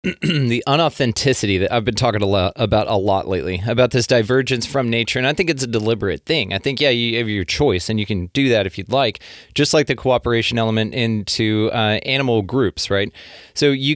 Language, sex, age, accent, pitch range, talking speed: English, male, 30-49, American, 105-135 Hz, 210 wpm